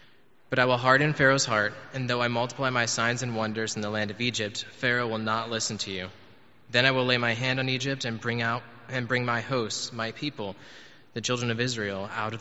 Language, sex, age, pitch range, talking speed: English, male, 20-39, 105-125 Hz, 230 wpm